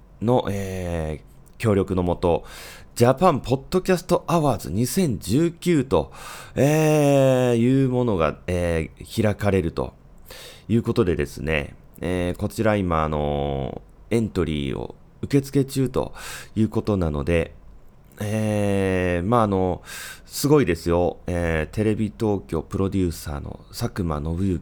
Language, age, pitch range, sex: Japanese, 30-49, 85-125 Hz, male